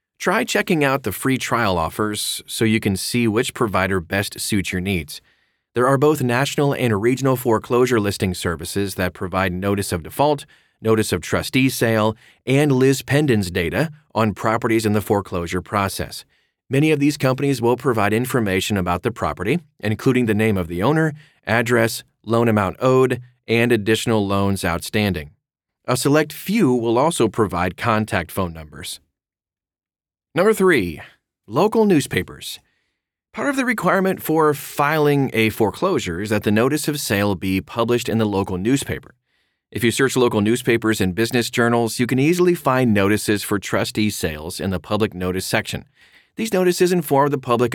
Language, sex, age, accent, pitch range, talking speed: English, male, 30-49, American, 95-130 Hz, 160 wpm